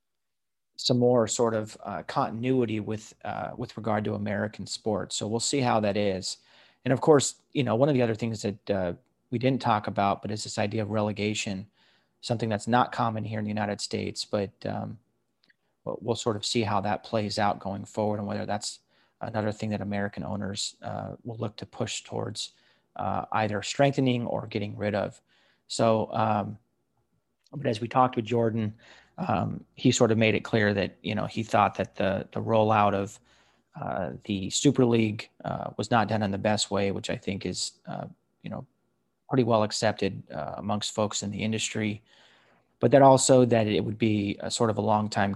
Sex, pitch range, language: male, 100-115 Hz, English